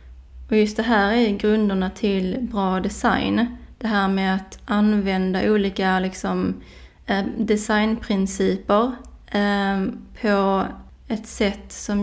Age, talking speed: 20-39, 115 wpm